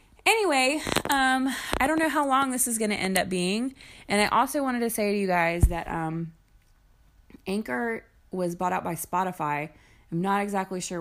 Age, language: 20-39, English